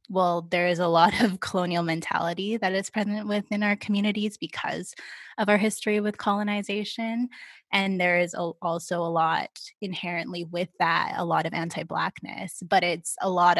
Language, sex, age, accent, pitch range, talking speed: English, female, 20-39, American, 180-205 Hz, 165 wpm